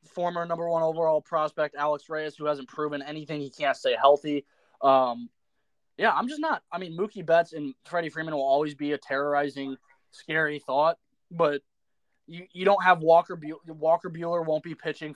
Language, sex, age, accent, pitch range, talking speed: English, male, 20-39, American, 135-160 Hz, 180 wpm